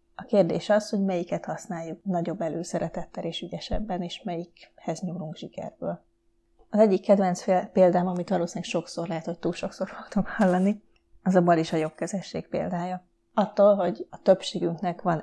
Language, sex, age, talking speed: Hungarian, female, 30-49, 155 wpm